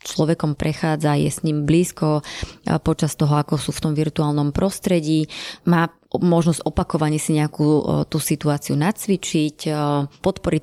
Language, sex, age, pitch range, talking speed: Slovak, female, 20-39, 150-170 Hz, 145 wpm